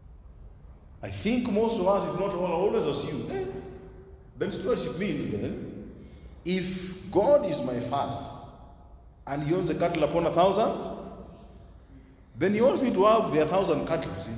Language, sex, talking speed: English, male, 165 wpm